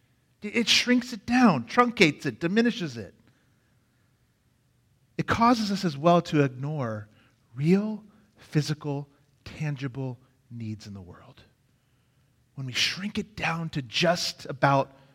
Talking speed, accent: 120 wpm, American